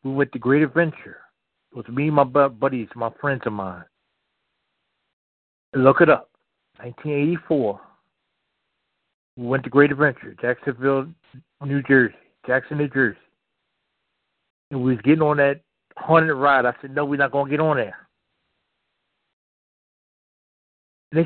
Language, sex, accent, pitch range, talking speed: English, male, American, 125-155 Hz, 140 wpm